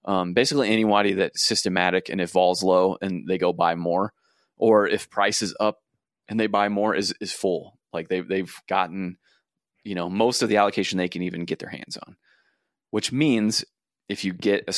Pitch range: 95-110 Hz